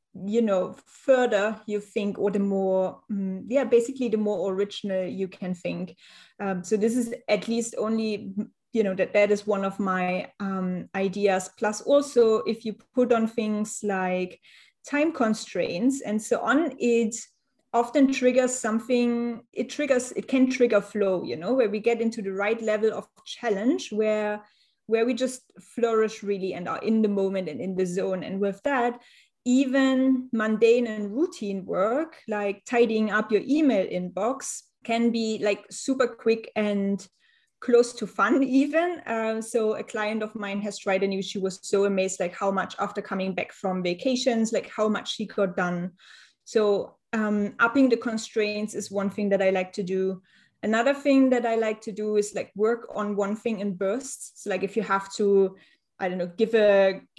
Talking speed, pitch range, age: 185 wpm, 200-235 Hz, 30-49